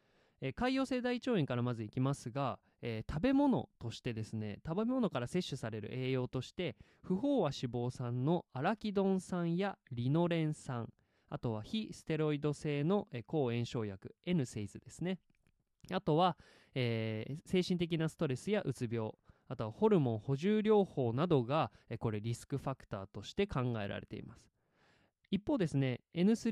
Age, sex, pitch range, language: 20-39, male, 120-185 Hz, Japanese